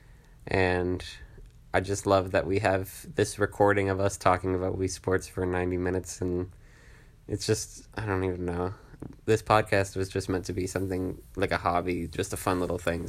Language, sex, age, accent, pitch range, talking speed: English, male, 20-39, American, 90-110 Hz, 190 wpm